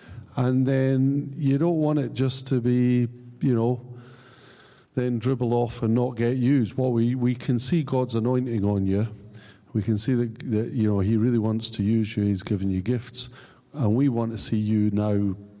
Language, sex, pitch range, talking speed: English, male, 105-125 Hz, 195 wpm